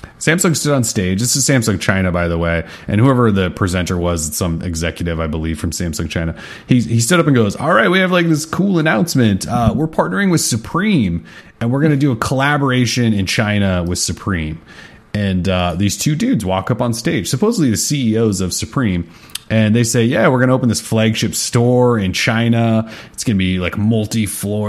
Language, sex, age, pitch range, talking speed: English, male, 30-49, 95-125 Hz, 210 wpm